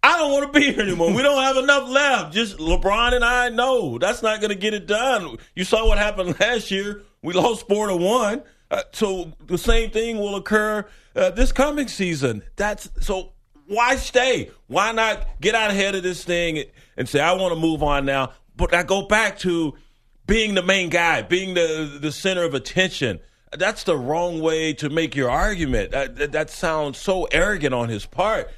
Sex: male